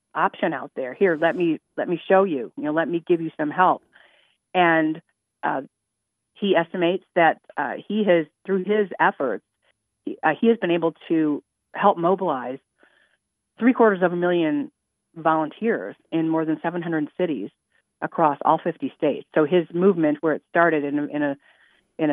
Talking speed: 175 wpm